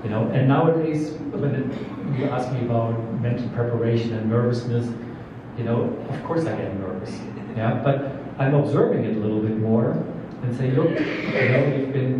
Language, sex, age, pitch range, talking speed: English, male, 40-59, 115-135 Hz, 180 wpm